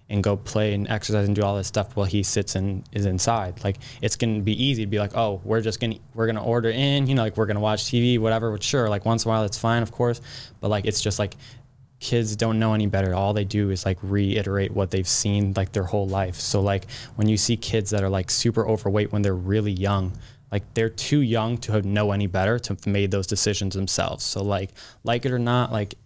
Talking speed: 255 wpm